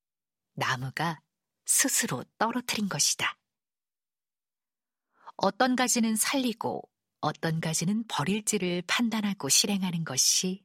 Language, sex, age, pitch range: Korean, female, 50-69, 160-210 Hz